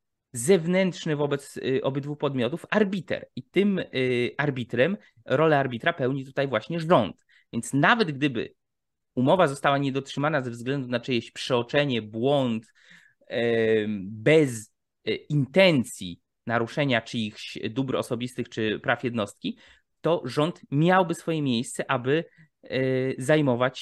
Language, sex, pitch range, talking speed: Polish, male, 120-155 Hz, 105 wpm